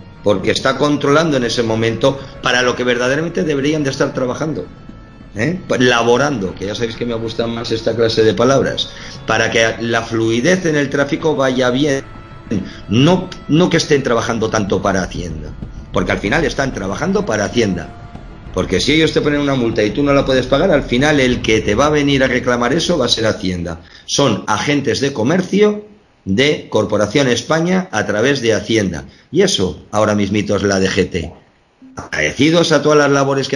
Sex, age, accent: male, 50-69, Spanish